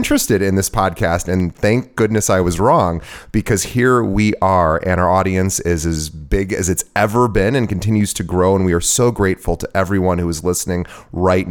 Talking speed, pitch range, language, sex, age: 205 wpm, 90-115 Hz, English, male, 30-49